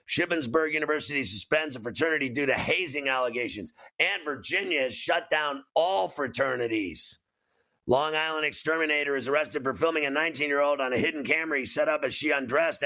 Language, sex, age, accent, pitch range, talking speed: English, male, 50-69, American, 140-160 Hz, 165 wpm